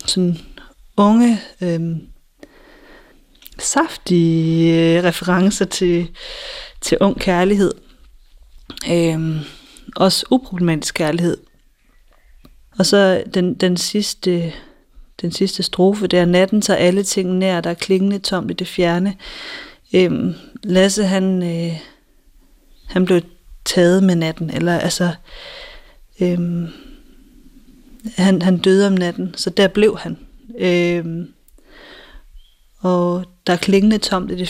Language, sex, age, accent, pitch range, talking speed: Danish, female, 30-49, native, 175-200 Hz, 115 wpm